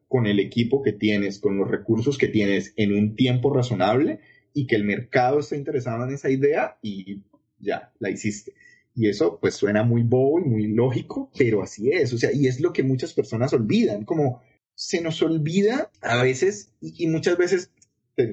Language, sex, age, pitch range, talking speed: Spanish, male, 30-49, 110-180 Hz, 195 wpm